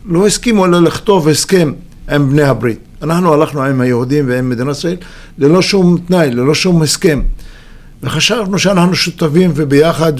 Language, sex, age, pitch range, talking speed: Hebrew, male, 50-69, 135-165 Hz, 145 wpm